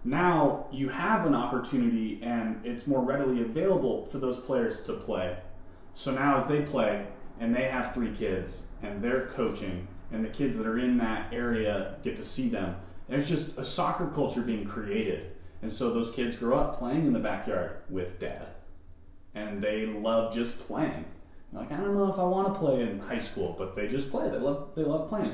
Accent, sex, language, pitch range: American, male, English, 100-140 Hz